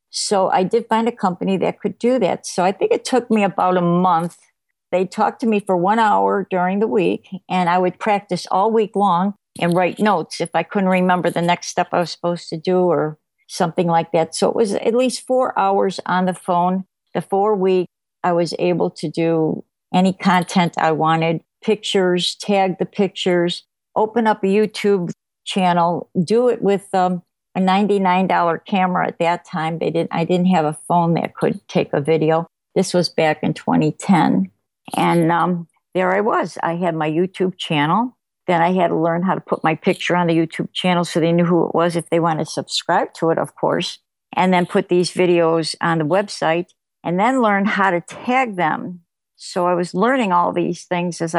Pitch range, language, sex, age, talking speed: 170-195 Hz, English, female, 50-69, 205 wpm